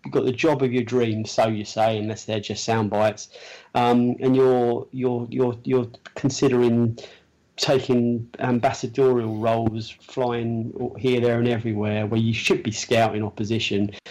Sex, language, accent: male, English, British